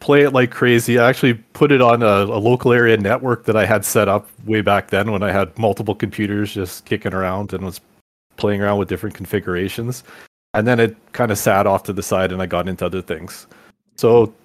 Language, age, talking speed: English, 30-49, 225 wpm